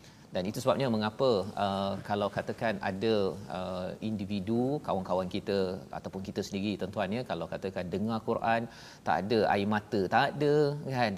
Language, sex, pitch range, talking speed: Malayalam, male, 100-125 Hz, 150 wpm